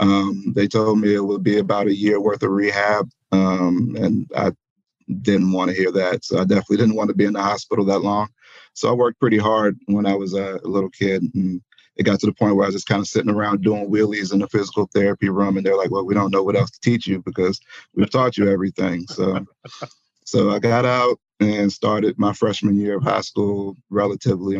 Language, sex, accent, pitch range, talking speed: English, male, American, 95-105 Hz, 235 wpm